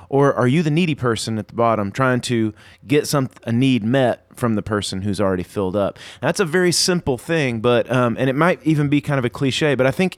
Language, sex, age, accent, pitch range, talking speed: English, male, 30-49, American, 115-150 Hz, 250 wpm